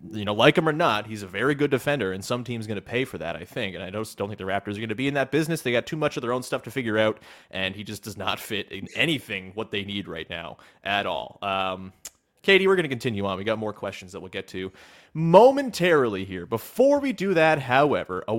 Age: 30-49